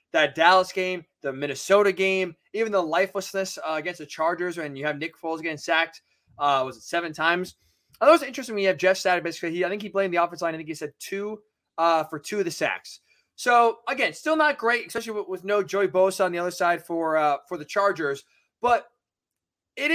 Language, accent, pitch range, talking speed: English, American, 165-205 Hz, 225 wpm